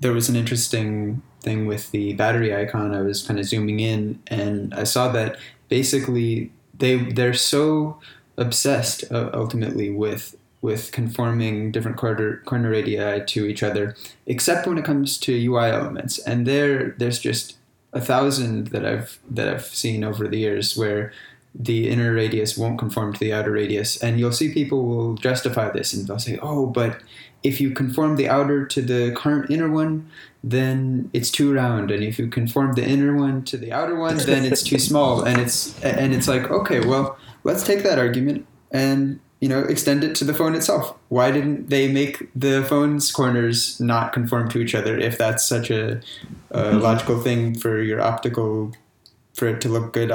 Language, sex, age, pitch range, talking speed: English, male, 20-39, 110-135 Hz, 185 wpm